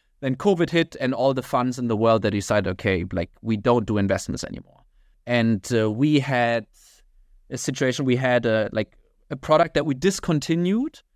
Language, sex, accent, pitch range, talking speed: English, male, German, 120-165 Hz, 175 wpm